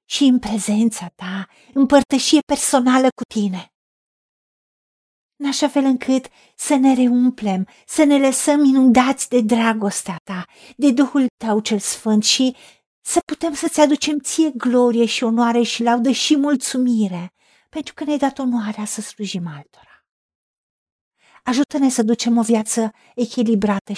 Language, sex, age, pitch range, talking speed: Romanian, female, 50-69, 195-260 Hz, 140 wpm